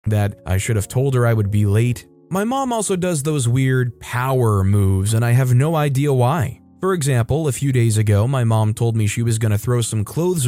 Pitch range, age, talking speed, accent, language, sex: 110-150 Hz, 20-39, 235 wpm, American, English, male